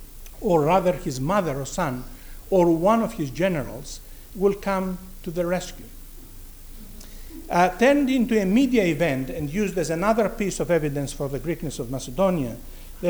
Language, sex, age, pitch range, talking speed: English, male, 50-69, 145-190 Hz, 160 wpm